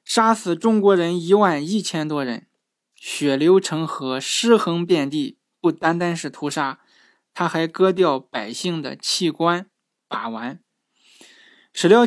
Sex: male